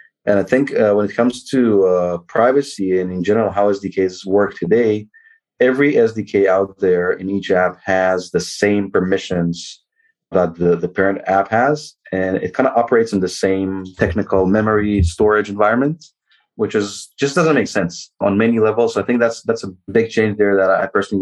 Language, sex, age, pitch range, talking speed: English, male, 30-49, 90-105 Hz, 190 wpm